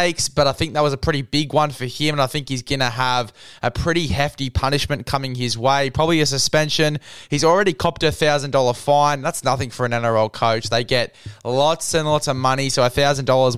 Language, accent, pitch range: English, Australian, 130-160 Hz